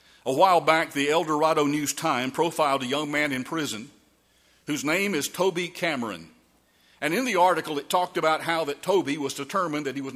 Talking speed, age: 200 wpm, 50-69